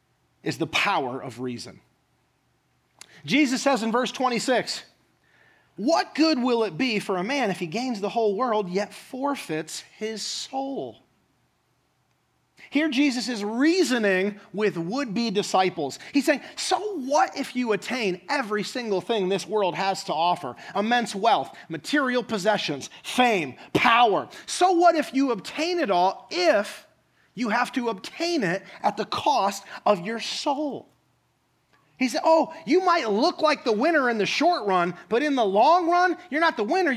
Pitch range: 205-295 Hz